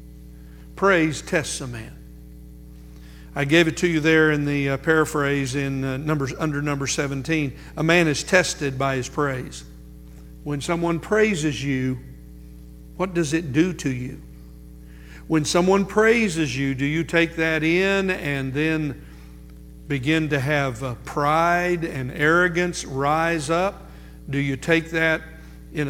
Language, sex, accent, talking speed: English, male, American, 145 wpm